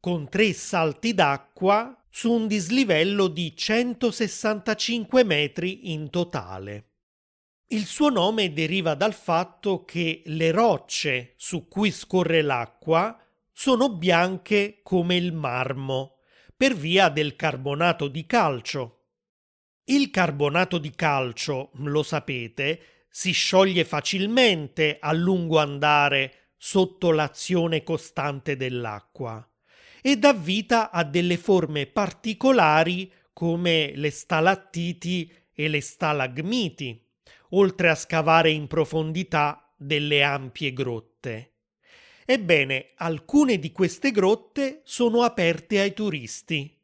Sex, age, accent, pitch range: male, 30-49, native, 145-195 Hz